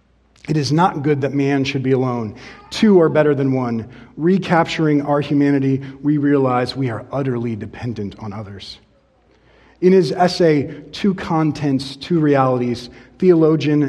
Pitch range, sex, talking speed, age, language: 130-155 Hz, male, 145 wpm, 30-49, English